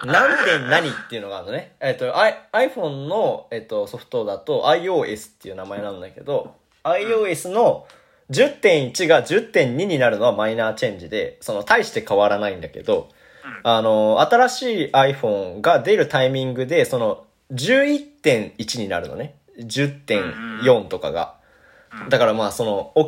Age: 20-39